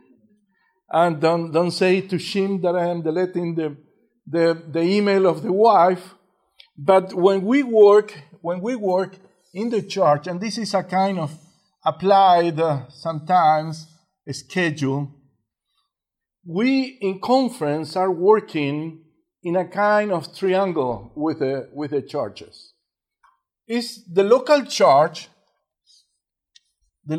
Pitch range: 165-215 Hz